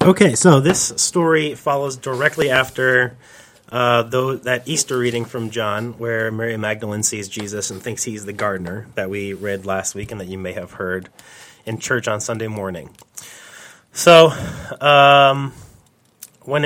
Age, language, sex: 30-49, English, male